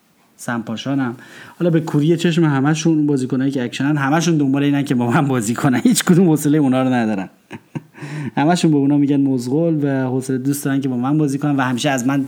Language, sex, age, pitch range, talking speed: Persian, male, 30-49, 130-170 Hz, 190 wpm